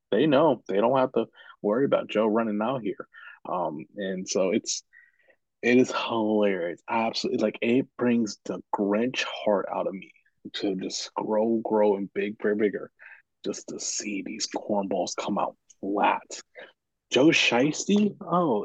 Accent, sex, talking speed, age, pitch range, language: American, male, 160 wpm, 20-39, 105-155 Hz, English